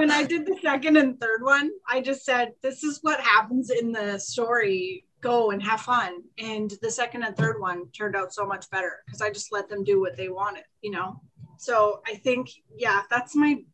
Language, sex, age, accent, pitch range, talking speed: English, female, 30-49, American, 210-270 Hz, 220 wpm